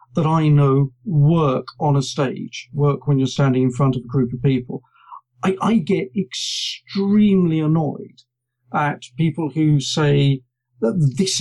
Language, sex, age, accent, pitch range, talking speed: English, male, 50-69, British, 140-190 Hz, 155 wpm